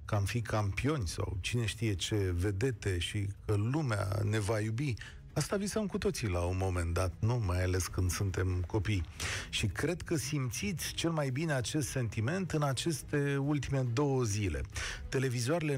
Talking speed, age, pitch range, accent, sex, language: 165 wpm, 40-59, 105-140 Hz, native, male, Romanian